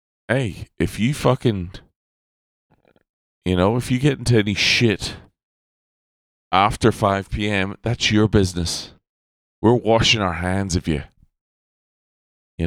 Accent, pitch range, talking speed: American, 80-105 Hz, 120 wpm